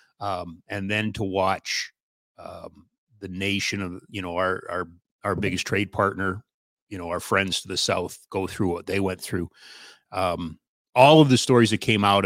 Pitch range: 95-120 Hz